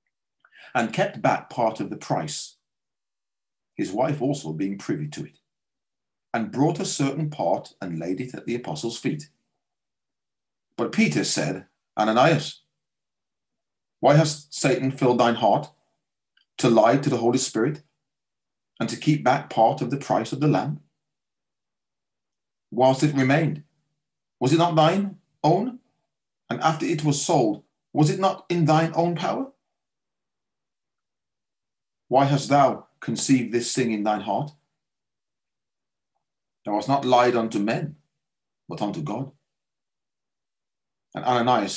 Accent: British